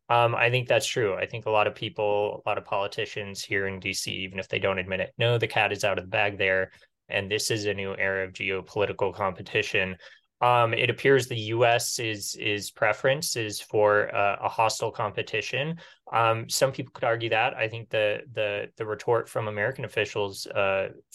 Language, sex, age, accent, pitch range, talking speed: English, male, 20-39, American, 95-115 Hz, 205 wpm